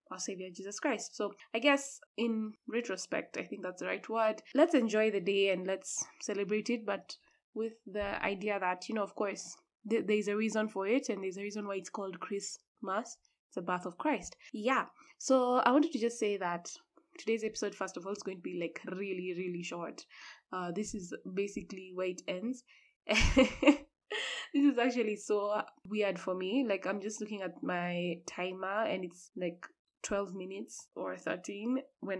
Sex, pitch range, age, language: female, 190-225 Hz, 10-29, English